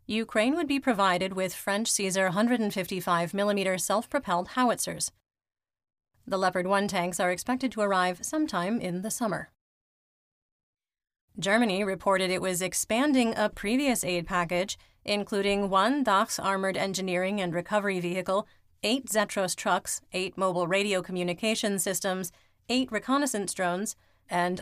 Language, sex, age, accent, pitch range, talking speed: English, female, 30-49, American, 185-225 Hz, 125 wpm